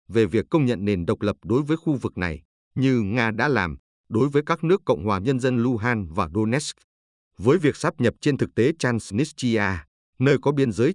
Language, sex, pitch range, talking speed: Vietnamese, male, 100-135 Hz, 215 wpm